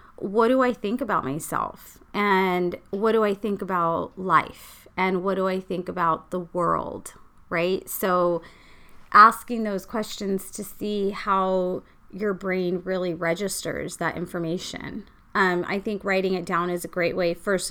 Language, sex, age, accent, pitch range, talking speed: English, female, 30-49, American, 180-215 Hz, 155 wpm